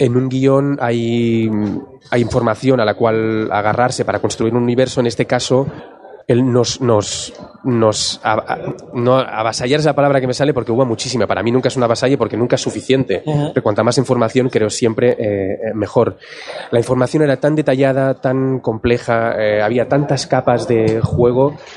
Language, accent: Spanish, Spanish